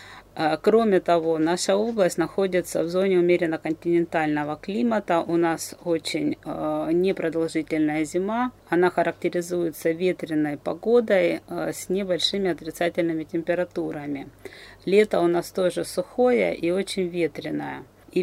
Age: 30-49